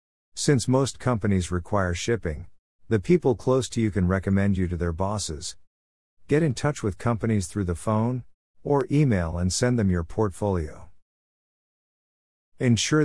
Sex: male